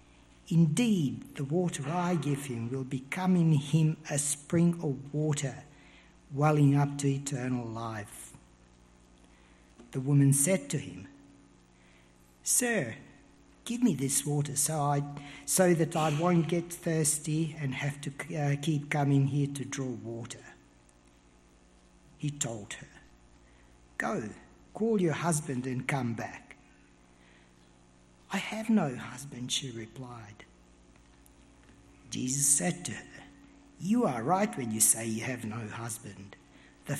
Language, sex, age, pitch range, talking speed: English, male, 60-79, 110-160 Hz, 125 wpm